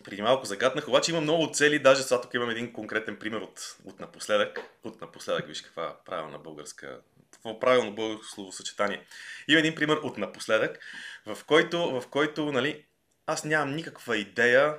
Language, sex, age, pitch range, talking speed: Bulgarian, male, 20-39, 105-150 Hz, 160 wpm